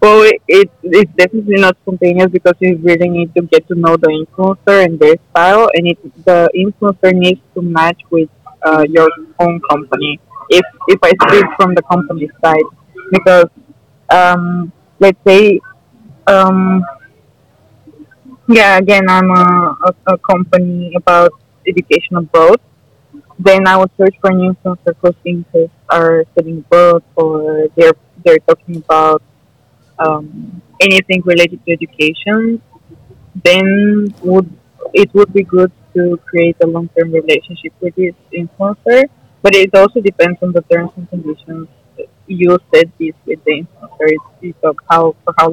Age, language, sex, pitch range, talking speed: 20-39, English, female, 160-190 Hz, 150 wpm